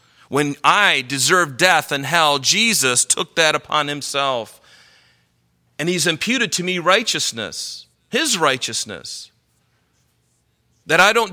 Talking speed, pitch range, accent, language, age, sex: 115 wpm, 120-165 Hz, American, English, 40-59, male